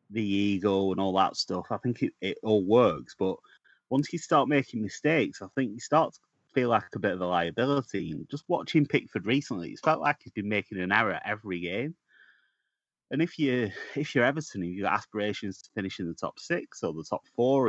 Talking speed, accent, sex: 220 wpm, British, male